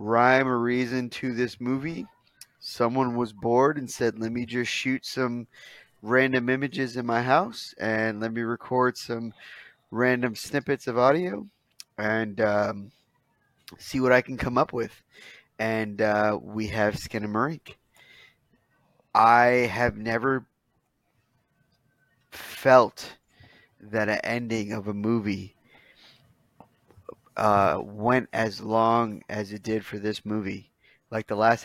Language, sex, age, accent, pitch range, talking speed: English, male, 20-39, American, 110-130 Hz, 125 wpm